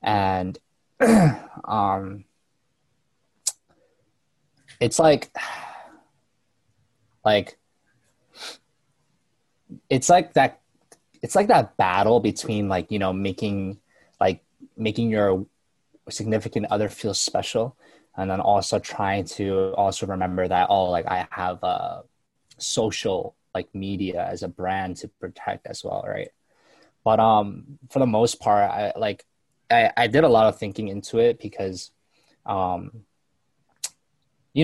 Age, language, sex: 20-39, English, male